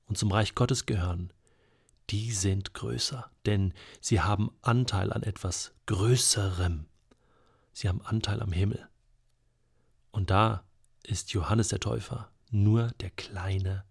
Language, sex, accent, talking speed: German, male, German, 125 wpm